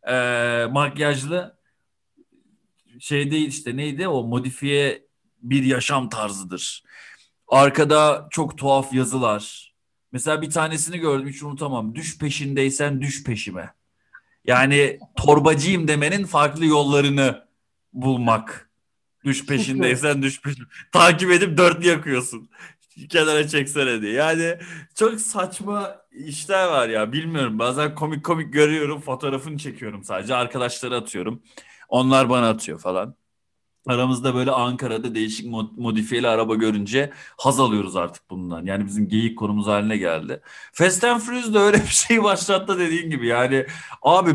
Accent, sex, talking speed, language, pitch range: native, male, 125 wpm, Turkish, 120-155 Hz